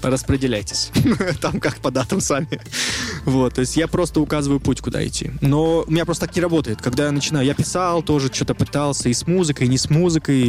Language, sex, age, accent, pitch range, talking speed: Russian, male, 20-39, native, 120-155 Hz, 210 wpm